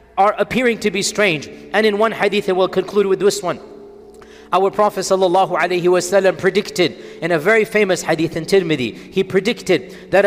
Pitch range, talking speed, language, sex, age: 190-230 Hz, 170 wpm, English, male, 40-59